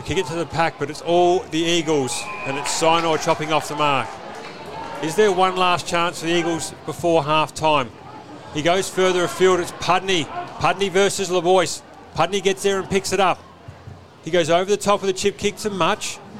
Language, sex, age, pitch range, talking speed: English, male, 40-59, 160-195 Hz, 200 wpm